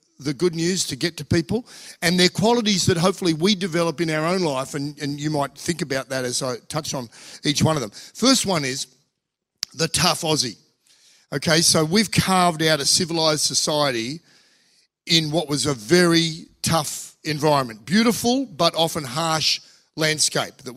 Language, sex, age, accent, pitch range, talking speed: English, male, 50-69, Australian, 135-175 Hz, 175 wpm